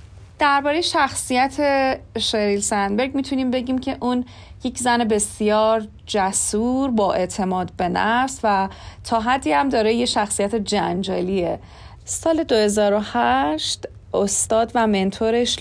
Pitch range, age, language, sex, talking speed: 180-225 Hz, 30-49, Persian, female, 110 wpm